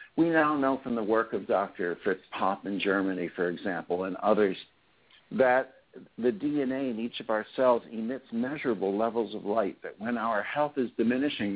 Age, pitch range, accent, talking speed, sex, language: 60-79, 110-150 Hz, American, 180 wpm, male, English